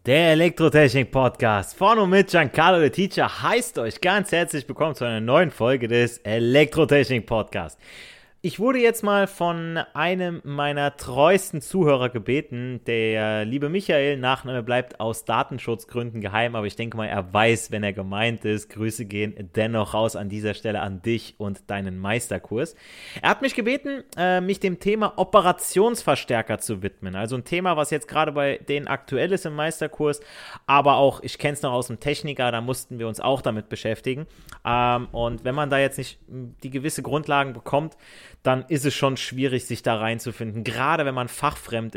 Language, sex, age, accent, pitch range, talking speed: German, male, 30-49, German, 115-150 Hz, 170 wpm